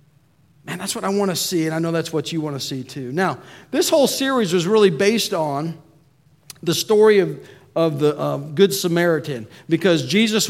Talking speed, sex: 200 wpm, male